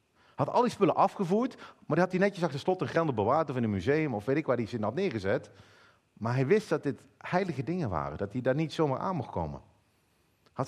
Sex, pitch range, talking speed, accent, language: male, 120-185 Hz, 260 wpm, Dutch, Dutch